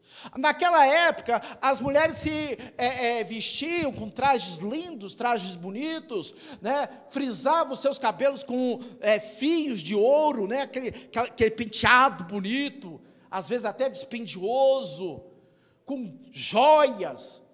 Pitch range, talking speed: 165-265 Hz, 115 wpm